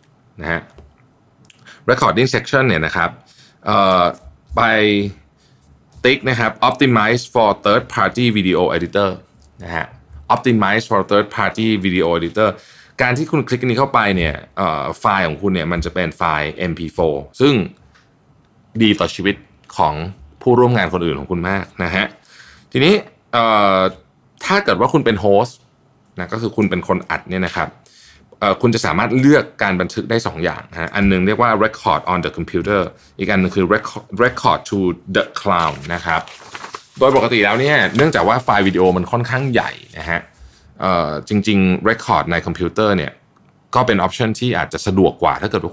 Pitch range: 90-110 Hz